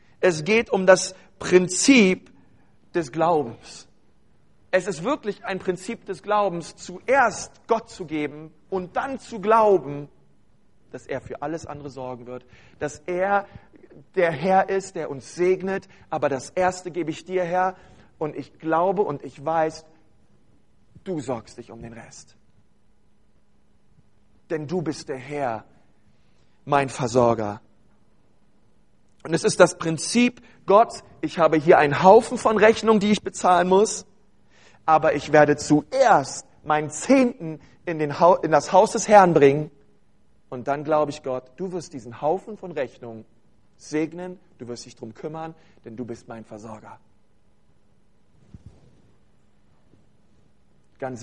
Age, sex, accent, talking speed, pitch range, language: 40-59, male, German, 140 wpm, 125-185 Hz, German